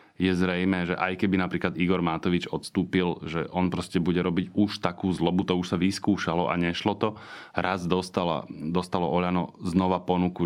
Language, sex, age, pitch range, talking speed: Slovak, male, 30-49, 85-95 Hz, 170 wpm